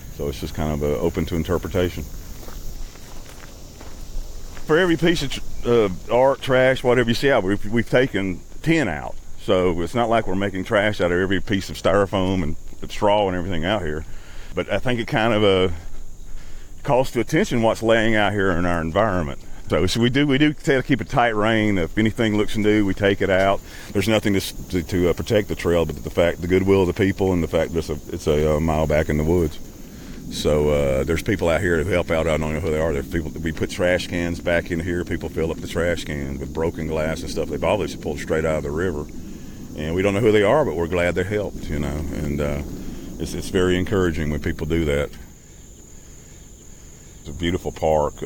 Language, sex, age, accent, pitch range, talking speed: English, male, 40-59, American, 75-100 Hz, 230 wpm